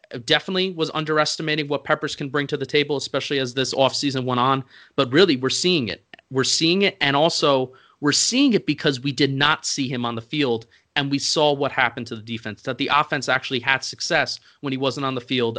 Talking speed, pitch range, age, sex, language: 225 wpm, 125-150 Hz, 30-49, male, English